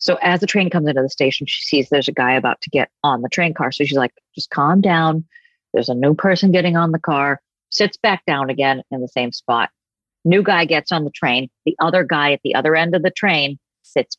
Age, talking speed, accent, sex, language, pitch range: 40-59, 250 wpm, American, female, English, 135-180 Hz